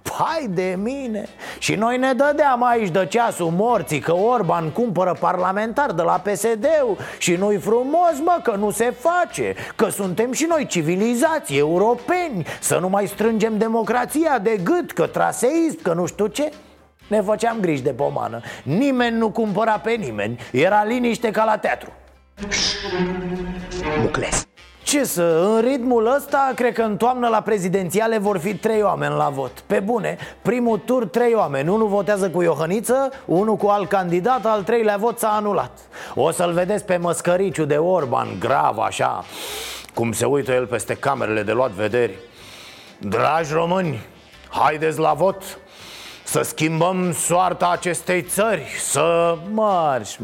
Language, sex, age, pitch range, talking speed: Romanian, male, 30-49, 175-235 Hz, 155 wpm